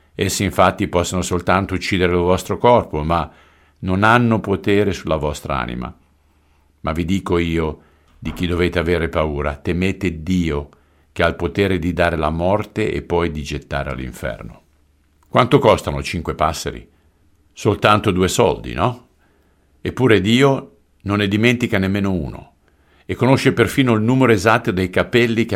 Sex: male